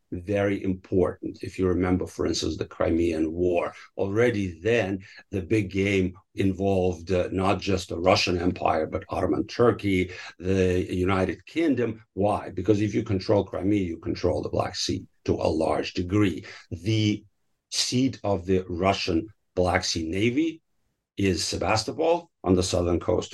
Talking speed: 145 wpm